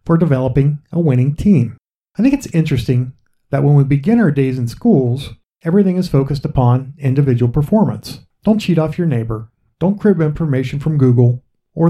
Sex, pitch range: male, 125-165 Hz